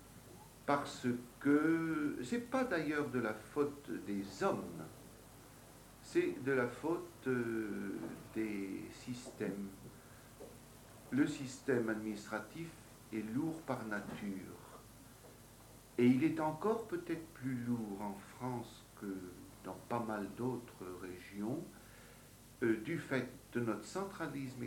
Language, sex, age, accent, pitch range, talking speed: English, male, 60-79, French, 105-135 Hz, 110 wpm